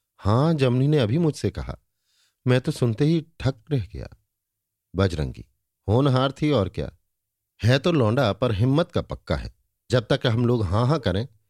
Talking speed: 170 wpm